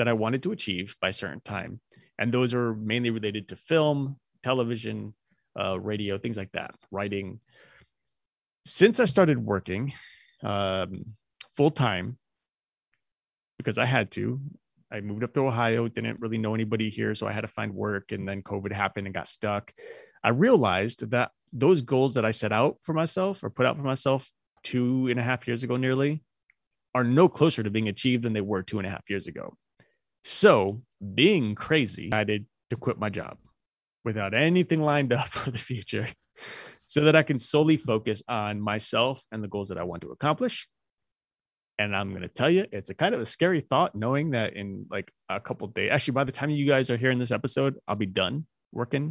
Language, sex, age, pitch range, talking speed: English, male, 30-49, 105-140 Hz, 200 wpm